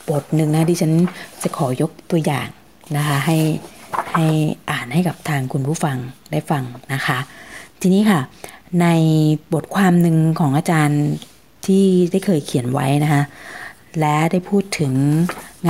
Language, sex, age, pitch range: Thai, female, 20-39, 140-165 Hz